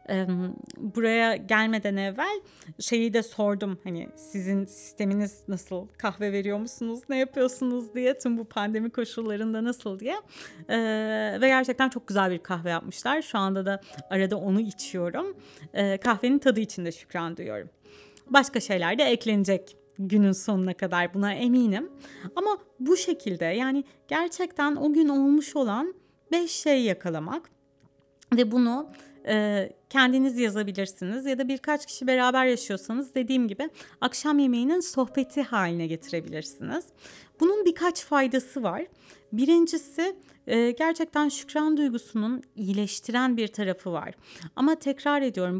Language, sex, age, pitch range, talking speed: Turkish, female, 30-49, 200-275 Hz, 125 wpm